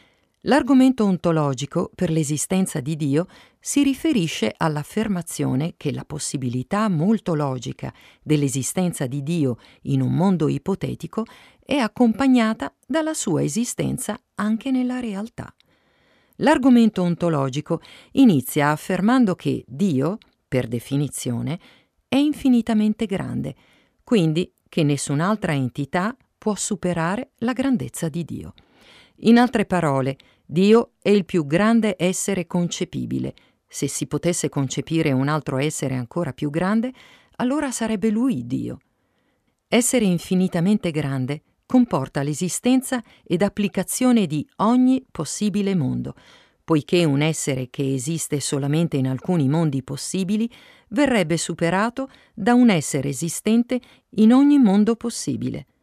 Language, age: Italian, 50-69